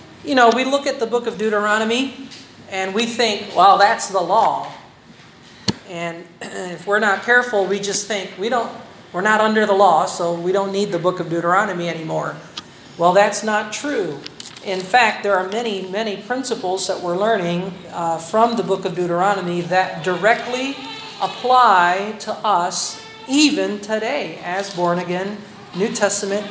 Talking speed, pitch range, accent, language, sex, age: 160 wpm, 185-230 Hz, American, Filipino, male, 40-59